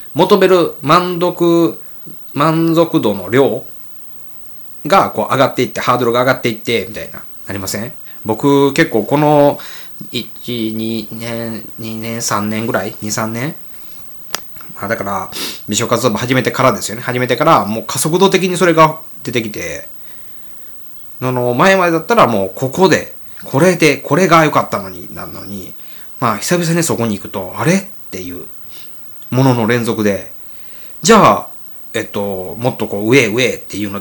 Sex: male